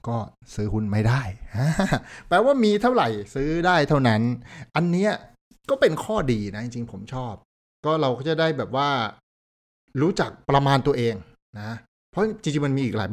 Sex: male